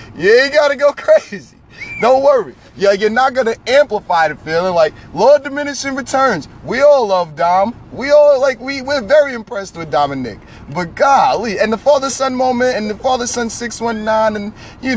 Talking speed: 185 wpm